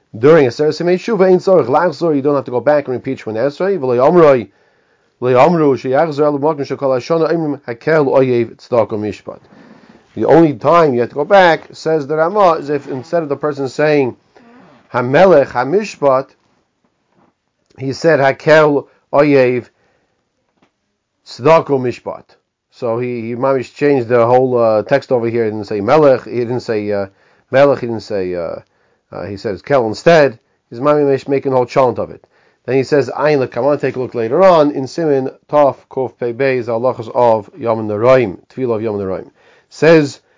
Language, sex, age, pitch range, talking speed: English, male, 40-59, 120-150 Hz, 150 wpm